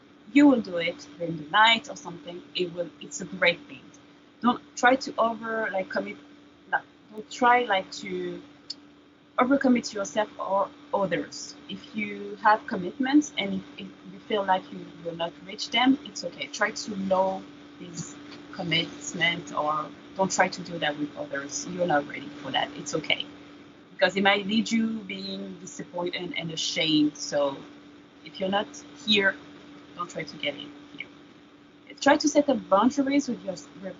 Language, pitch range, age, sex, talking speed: English, 170-240 Hz, 30-49, female, 170 wpm